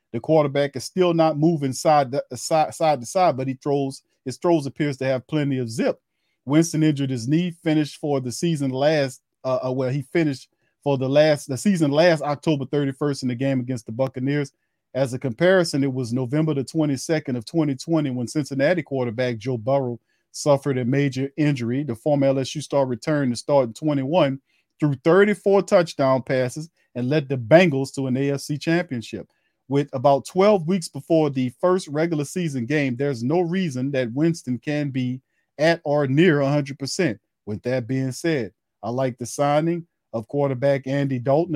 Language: English